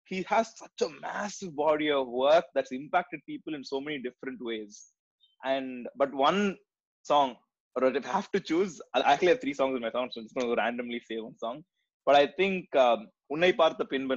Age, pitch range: 20-39, 120-165 Hz